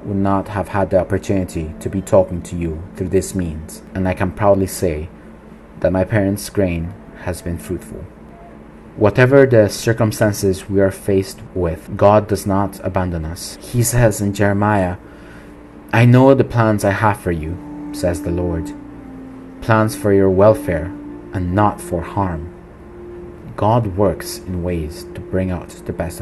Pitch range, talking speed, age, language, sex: 90-105 Hz, 160 wpm, 40-59, English, male